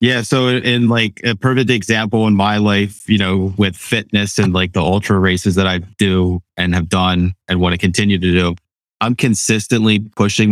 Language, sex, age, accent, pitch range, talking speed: English, male, 30-49, American, 90-105 Hz, 195 wpm